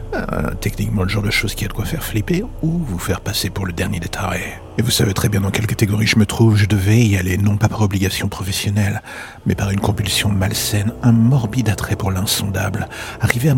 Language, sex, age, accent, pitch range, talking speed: French, male, 50-69, French, 95-110 Hz, 230 wpm